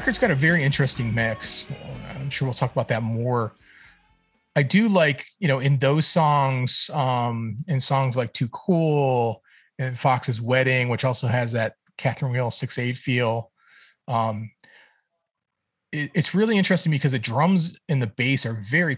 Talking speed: 170 wpm